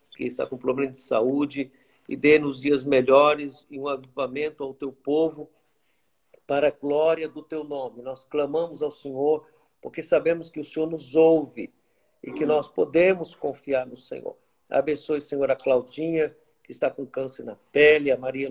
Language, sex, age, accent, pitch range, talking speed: Portuguese, male, 50-69, Brazilian, 140-160 Hz, 170 wpm